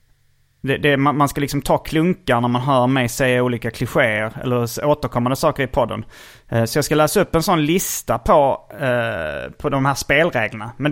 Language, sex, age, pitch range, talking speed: Swedish, male, 30-49, 120-140 Hz, 180 wpm